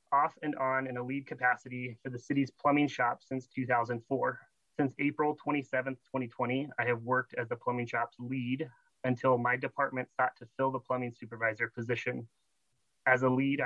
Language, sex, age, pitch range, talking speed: English, male, 30-49, 120-135 Hz, 170 wpm